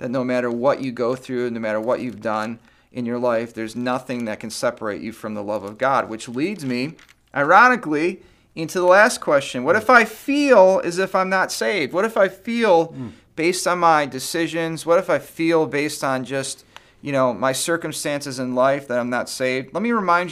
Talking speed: 210 wpm